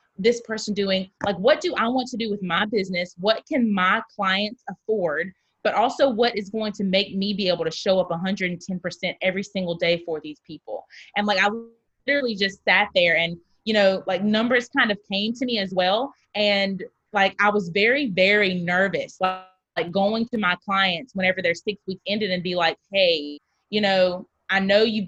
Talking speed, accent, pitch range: 200 wpm, American, 180-225 Hz